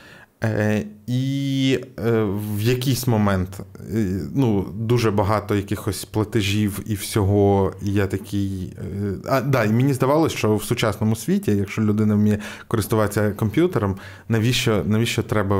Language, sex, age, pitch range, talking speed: Ukrainian, male, 20-39, 100-125 Hz, 120 wpm